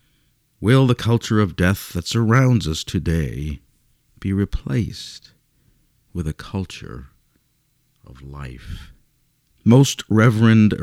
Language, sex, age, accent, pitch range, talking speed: English, male, 50-69, American, 85-125 Hz, 100 wpm